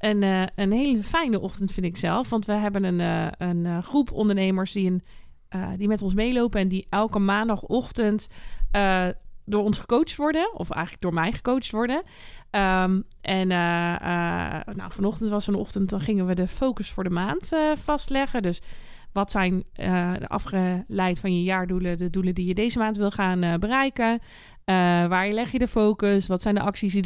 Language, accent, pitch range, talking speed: Dutch, Dutch, 180-215 Hz, 180 wpm